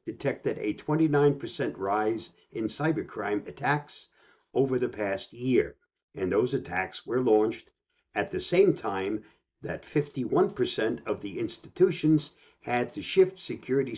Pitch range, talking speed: 120-170 Hz, 125 wpm